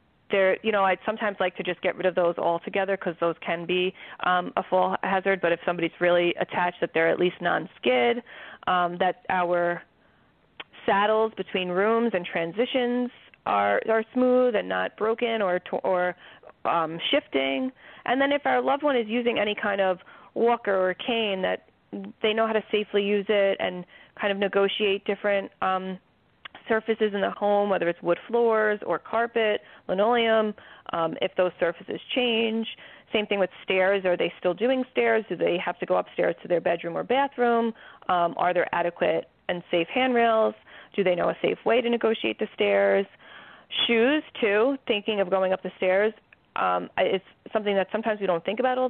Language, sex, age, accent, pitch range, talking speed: English, female, 30-49, American, 180-225 Hz, 180 wpm